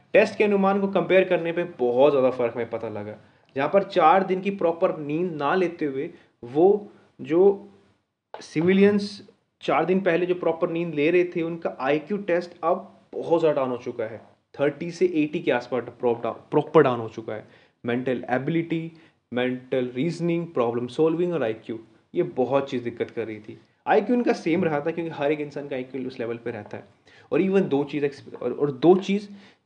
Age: 20-39